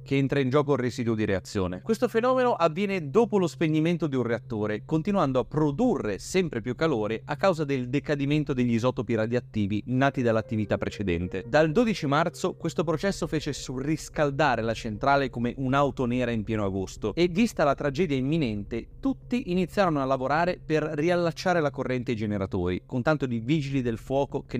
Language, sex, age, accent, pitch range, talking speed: Italian, male, 30-49, native, 120-155 Hz, 170 wpm